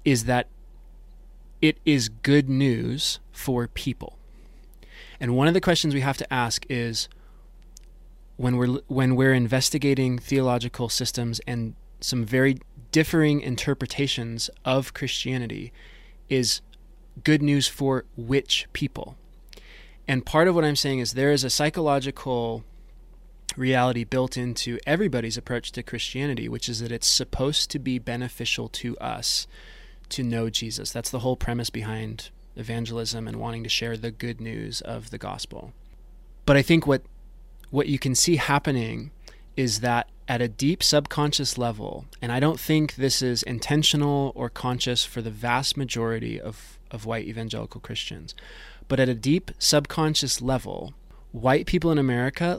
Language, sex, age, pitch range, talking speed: English, male, 20-39, 120-145 Hz, 145 wpm